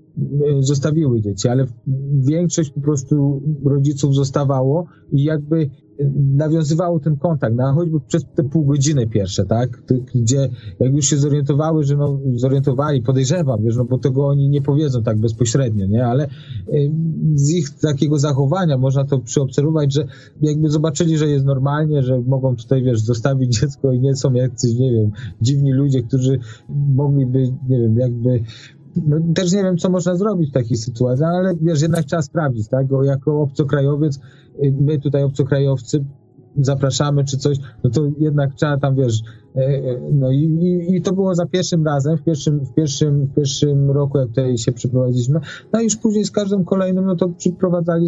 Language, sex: Polish, male